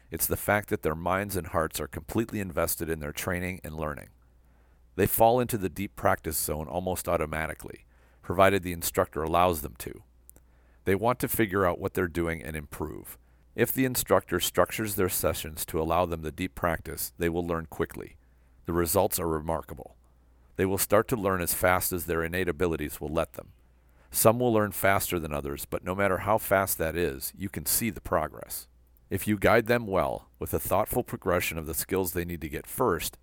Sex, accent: male, American